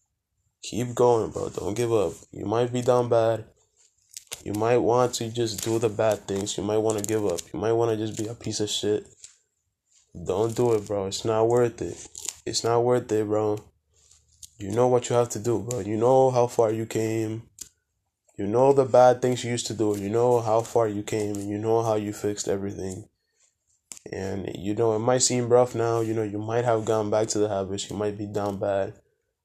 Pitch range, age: 105-120 Hz, 20-39